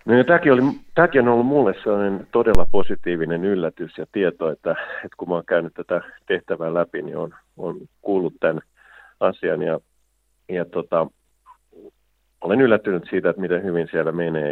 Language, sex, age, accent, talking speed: Finnish, male, 50-69, native, 150 wpm